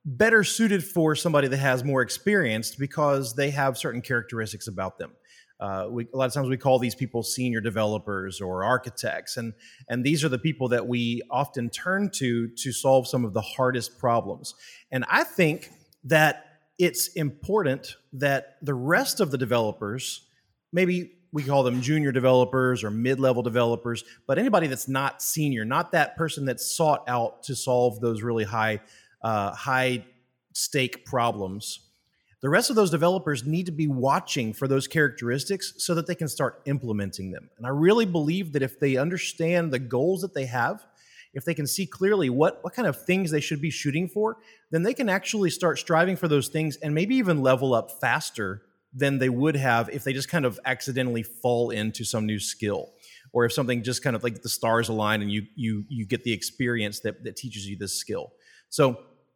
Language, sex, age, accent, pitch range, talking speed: English, male, 30-49, American, 120-155 Hz, 190 wpm